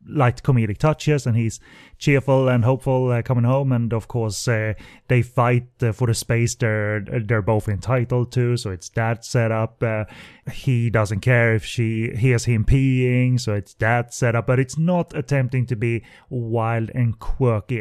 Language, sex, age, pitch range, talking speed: English, male, 30-49, 110-130 Hz, 175 wpm